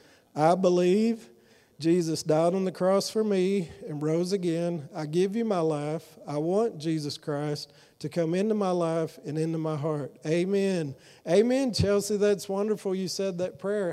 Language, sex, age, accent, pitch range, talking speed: English, male, 40-59, American, 150-185 Hz, 170 wpm